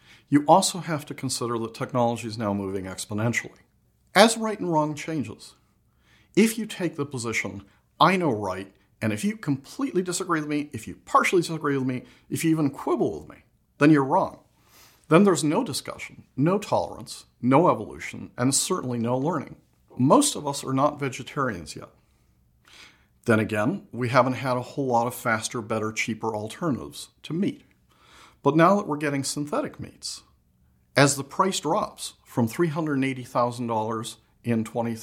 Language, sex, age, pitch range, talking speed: English, male, 50-69, 110-145 Hz, 165 wpm